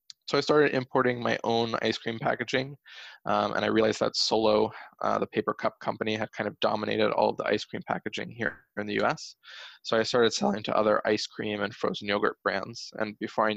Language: English